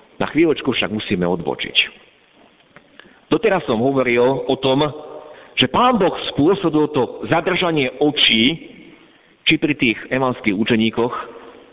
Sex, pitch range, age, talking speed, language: male, 110-155 Hz, 50-69, 115 wpm, Slovak